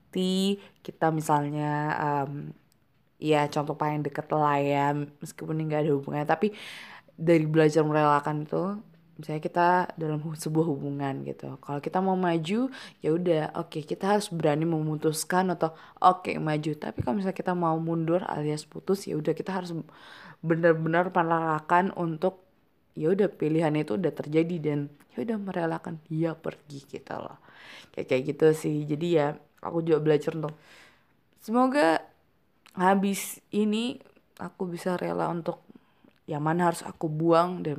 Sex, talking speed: female, 150 wpm